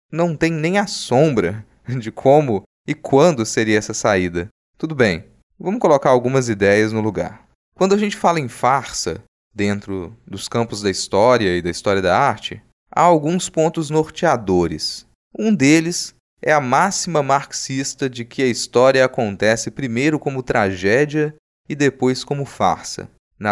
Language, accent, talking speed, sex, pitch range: Portuguese, Brazilian, 150 wpm, male, 115-160 Hz